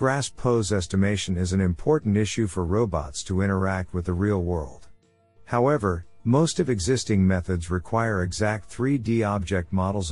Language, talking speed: English, 150 wpm